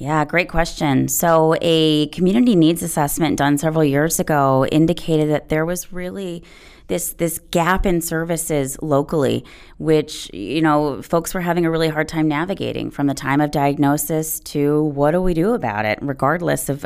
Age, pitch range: 20-39, 145-170 Hz